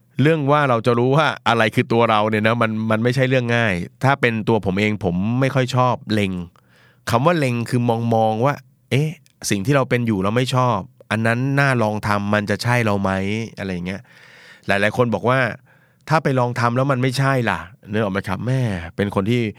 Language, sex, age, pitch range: Thai, male, 30-49, 105-130 Hz